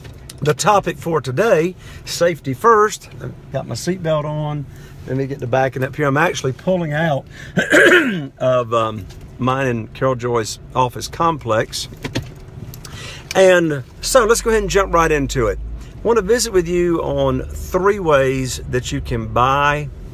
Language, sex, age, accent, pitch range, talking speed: English, male, 50-69, American, 120-155 Hz, 160 wpm